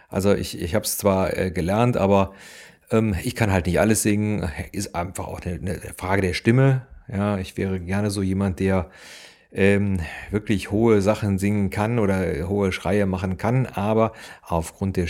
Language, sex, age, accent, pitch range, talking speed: German, male, 40-59, German, 90-100 Hz, 180 wpm